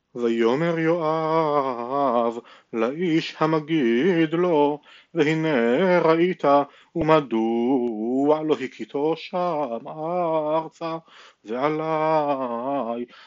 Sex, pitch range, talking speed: male, 130-165 Hz, 60 wpm